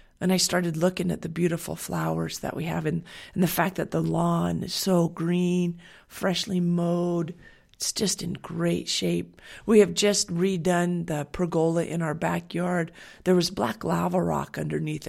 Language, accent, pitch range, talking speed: English, American, 165-190 Hz, 170 wpm